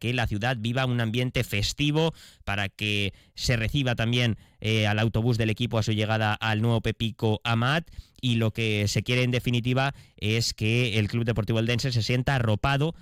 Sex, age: male, 20-39